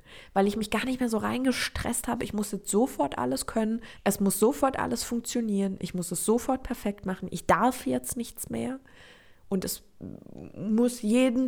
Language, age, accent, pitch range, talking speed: German, 20-39, German, 185-225 Hz, 185 wpm